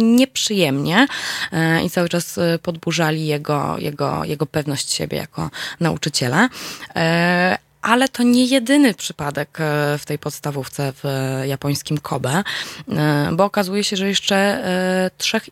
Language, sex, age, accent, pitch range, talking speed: Polish, female, 20-39, native, 145-185 Hz, 120 wpm